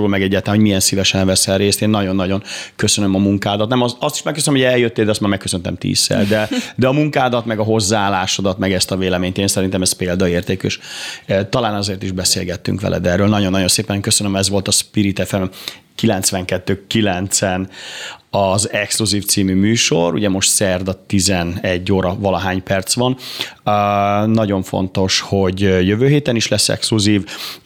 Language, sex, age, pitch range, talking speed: Hungarian, male, 30-49, 95-105 Hz, 155 wpm